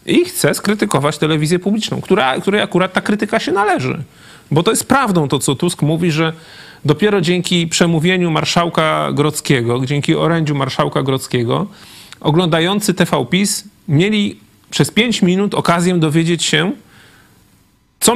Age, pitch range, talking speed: 40-59, 145-180 Hz, 135 wpm